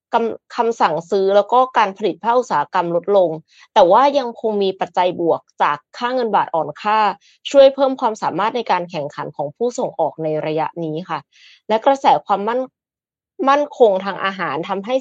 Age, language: 20-39, Thai